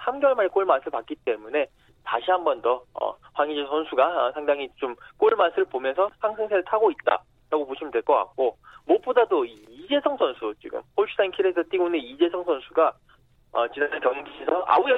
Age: 20-39